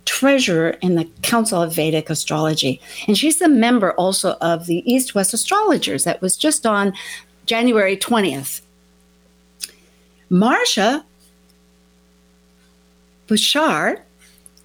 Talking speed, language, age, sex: 100 wpm, English, 50-69, female